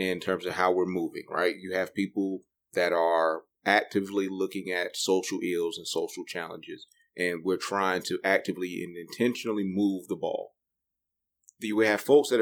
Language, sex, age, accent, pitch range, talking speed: English, male, 30-49, American, 100-130 Hz, 165 wpm